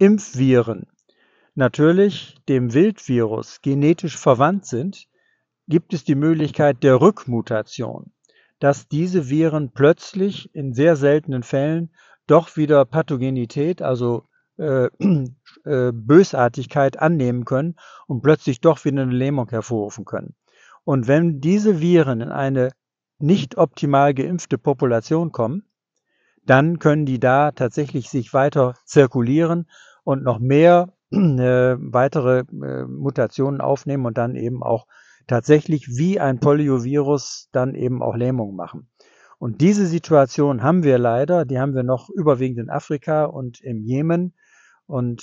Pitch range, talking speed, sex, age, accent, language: 125-160 Hz, 125 wpm, male, 60-79, German, German